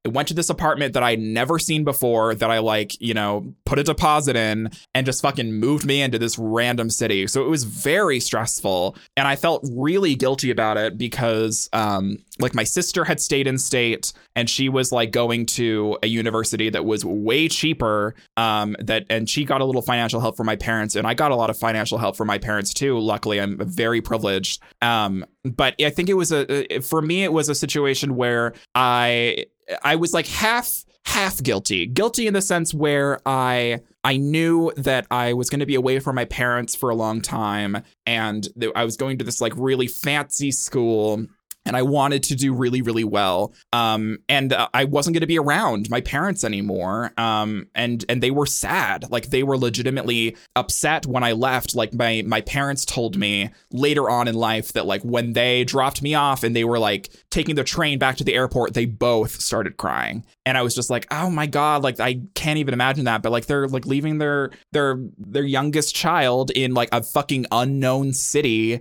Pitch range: 115-145 Hz